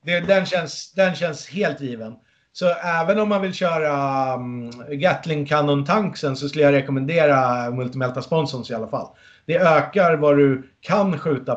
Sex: male